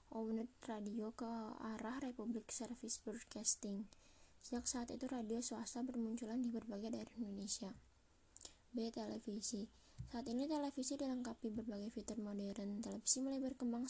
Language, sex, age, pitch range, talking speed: Indonesian, female, 20-39, 220-240 Hz, 125 wpm